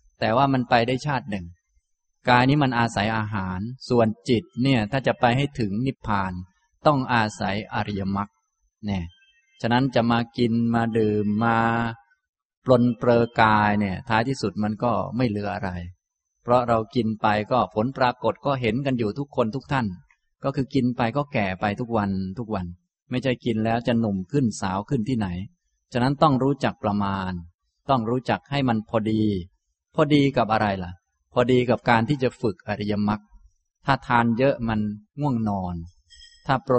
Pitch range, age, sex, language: 105-125 Hz, 20-39, male, Thai